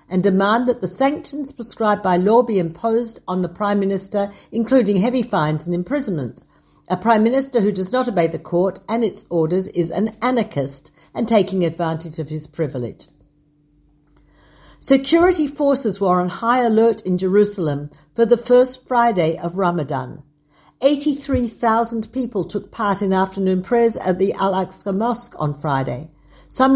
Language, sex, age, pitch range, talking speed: Hebrew, female, 60-79, 155-225 Hz, 155 wpm